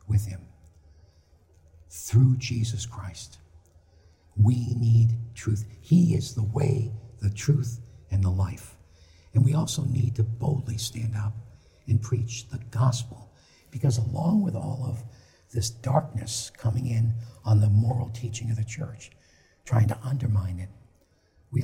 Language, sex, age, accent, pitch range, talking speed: English, male, 60-79, American, 105-130 Hz, 140 wpm